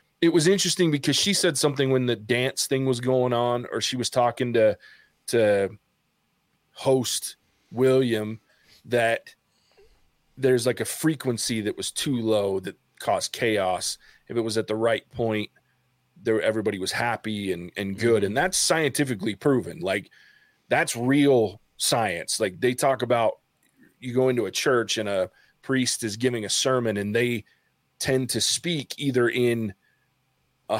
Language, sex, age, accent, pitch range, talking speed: English, male, 30-49, American, 110-140 Hz, 155 wpm